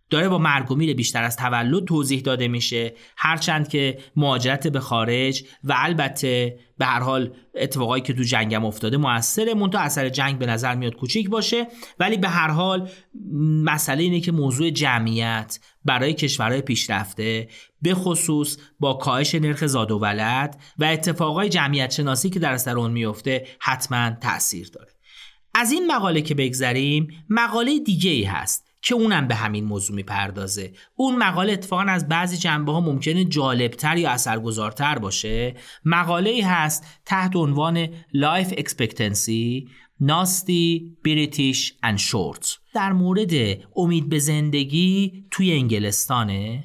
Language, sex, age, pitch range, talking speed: Persian, male, 30-49, 120-175 Hz, 140 wpm